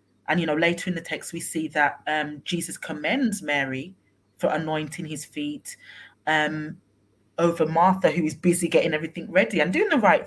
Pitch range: 150-195 Hz